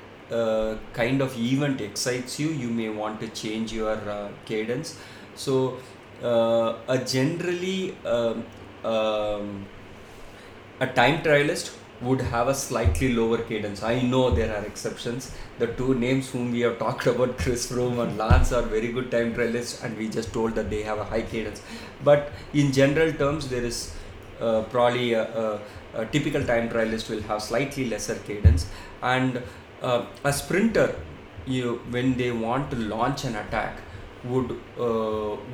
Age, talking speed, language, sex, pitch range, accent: 30-49, 160 wpm, English, male, 105-125 Hz, Indian